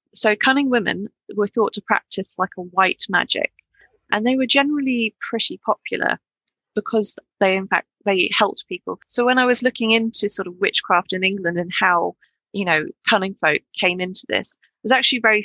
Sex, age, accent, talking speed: female, 20-39, British, 185 wpm